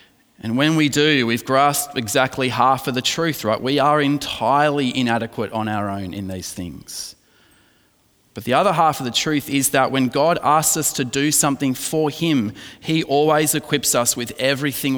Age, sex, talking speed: 30-49, male, 185 wpm